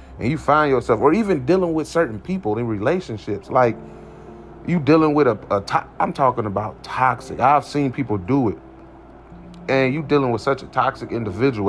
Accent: American